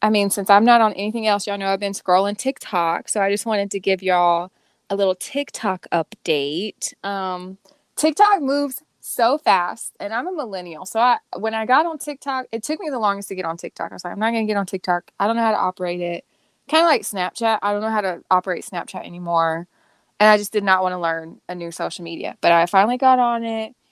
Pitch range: 185-225 Hz